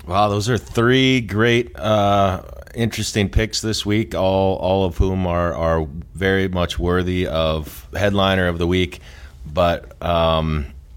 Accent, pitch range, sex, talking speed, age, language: American, 80-95 Hz, male, 140 wpm, 30-49, English